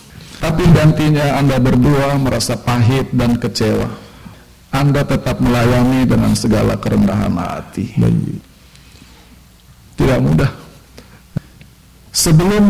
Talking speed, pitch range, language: 85 wpm, 120-155 Hz, Indonesian